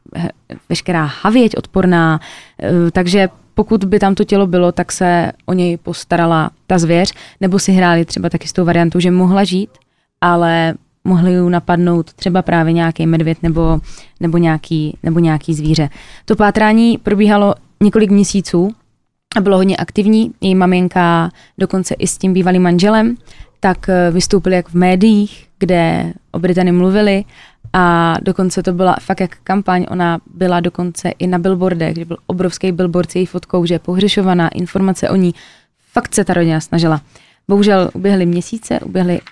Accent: native